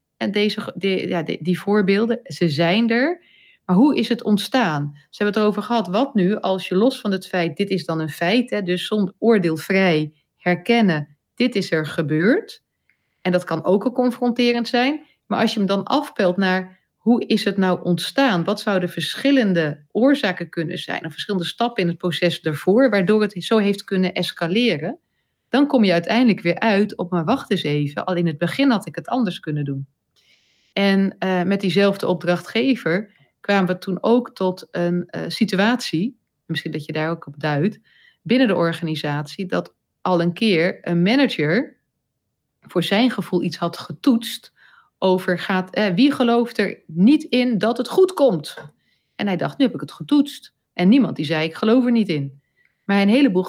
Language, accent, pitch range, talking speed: Dutch, Dutch, 170-230 Hz, 185 wpm